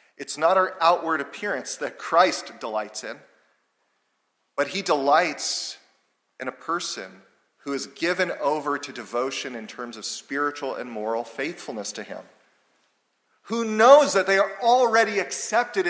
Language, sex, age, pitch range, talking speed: English, male, 40-59, 140-205 Hz, 140 wpm